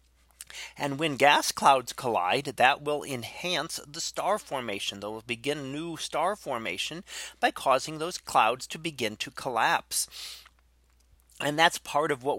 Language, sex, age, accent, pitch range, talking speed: English, male, 30-49, American, 120-155 Hz, 145 wpm